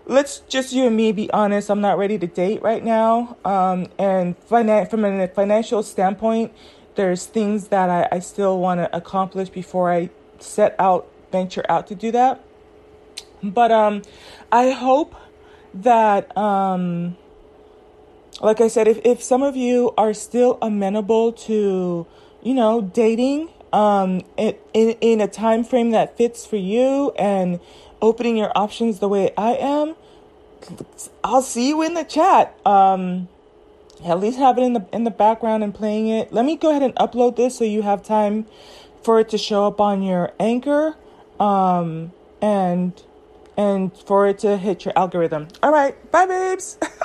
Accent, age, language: American, 20-39, English